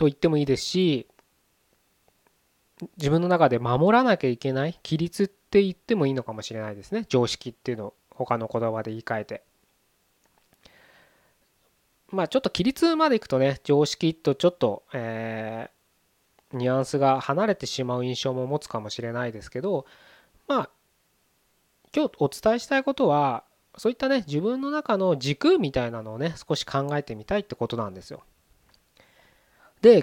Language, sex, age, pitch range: Japanese, male, 20-39, 120-185 Hz